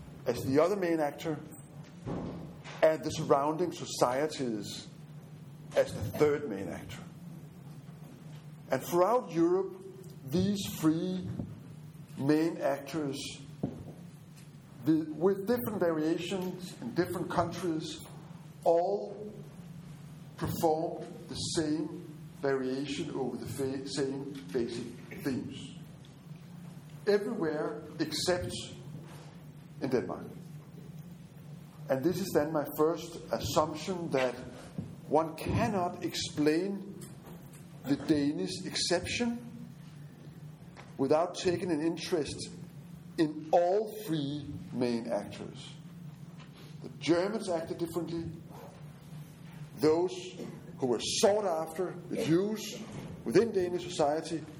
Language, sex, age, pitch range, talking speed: English, male, 60-79, 150-170 Hz, 90 wpm